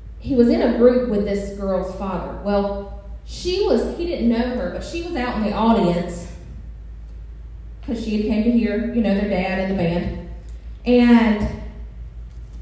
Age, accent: 30-49, American